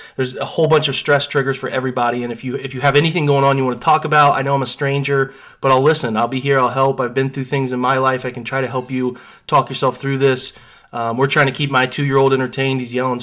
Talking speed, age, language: 285 wpm, 20-39, English